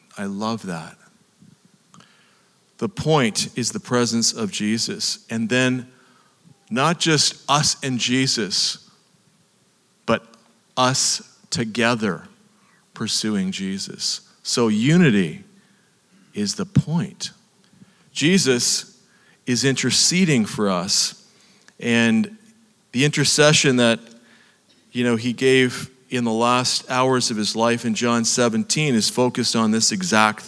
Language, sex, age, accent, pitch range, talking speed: English, male, 40-59, American, 120-190 Hz, 110 wpm